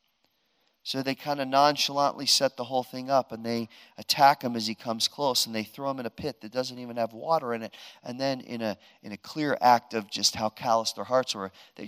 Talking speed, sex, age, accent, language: 240 wpm, male, 40-59, American, English